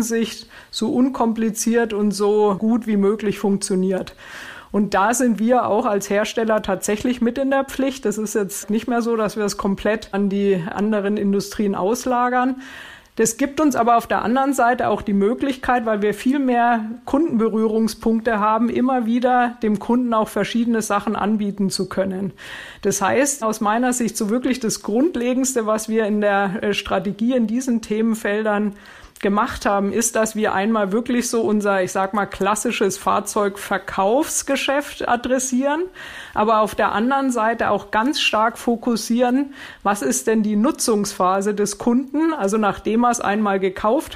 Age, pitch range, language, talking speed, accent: 50-69, 205-240 Hz, German, 160 wpm, German